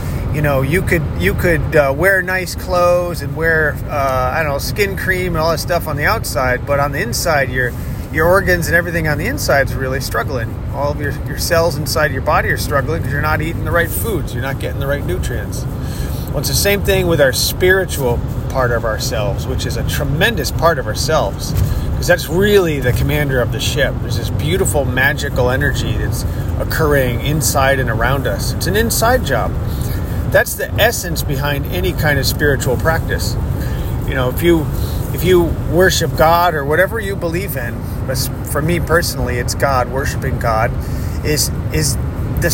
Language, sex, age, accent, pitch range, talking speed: English, male, 30-49, American, 115-145 Hz, 195 wpm